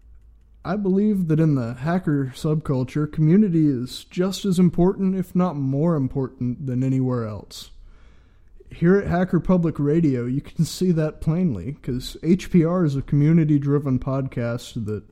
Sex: male